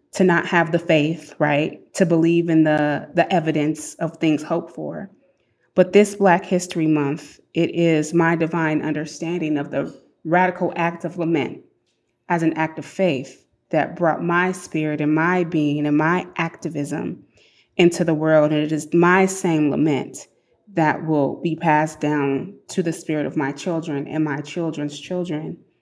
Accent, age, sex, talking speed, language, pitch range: American, 20-39, female, 165 wpm, English, 150-175 Hz